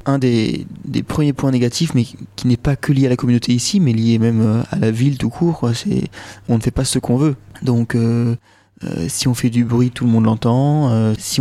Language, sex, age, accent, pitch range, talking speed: French, male, 30-49, French, 115-130 Hz, 245 wpm